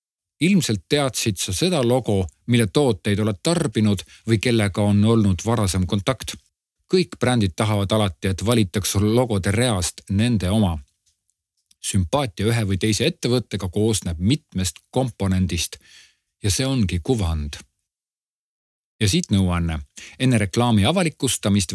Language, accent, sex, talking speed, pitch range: Czech, Finnish, male, 120 wpm, 95-125 Hz